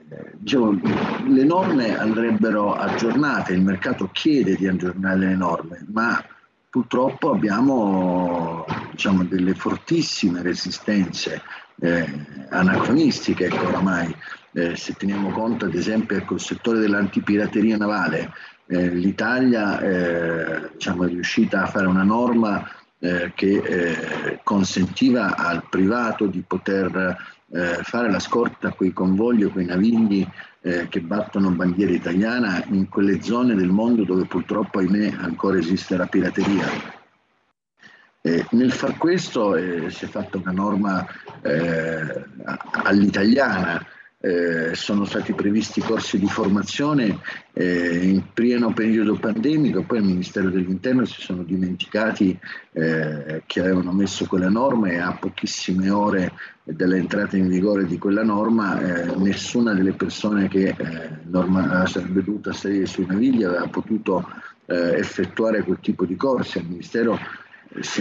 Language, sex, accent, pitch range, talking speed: Italian, male, native, 90-100 Hz, 125 wpm